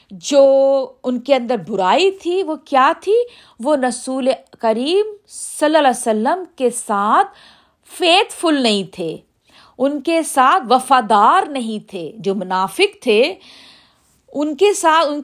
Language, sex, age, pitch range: Urdu, female, 50-69, 215-305 Hz